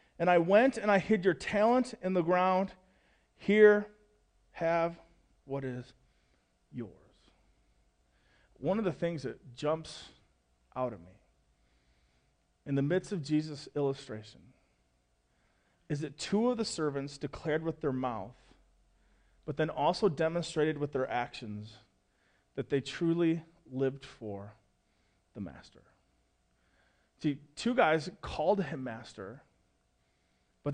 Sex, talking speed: male, 120 wpm